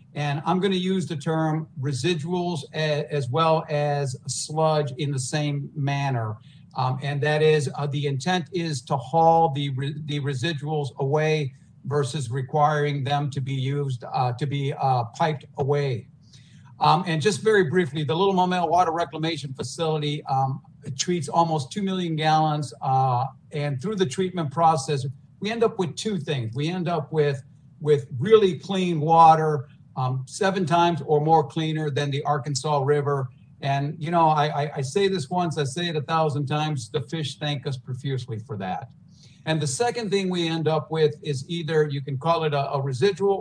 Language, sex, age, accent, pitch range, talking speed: English, male, 50-69, American, 140-165 Hz, 175 wpm